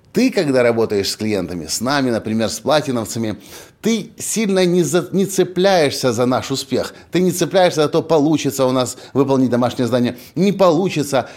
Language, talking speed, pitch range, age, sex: Russian, 165 wpm, 125-175 Hz, 30-49, male